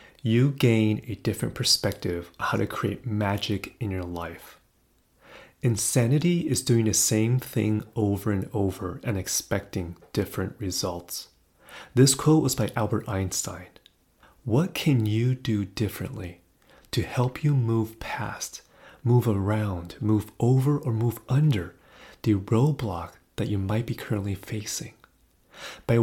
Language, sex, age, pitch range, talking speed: English, male, 30-49, 95-125 Hz, 135 wpm